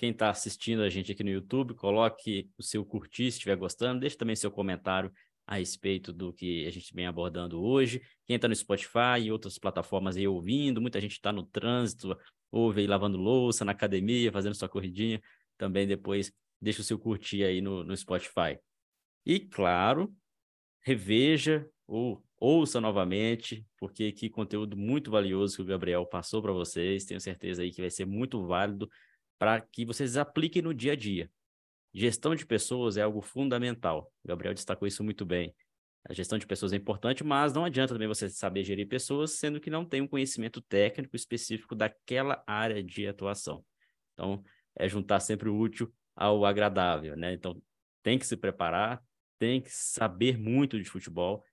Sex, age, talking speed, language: male, 20-39, 175 wpm, Portuguese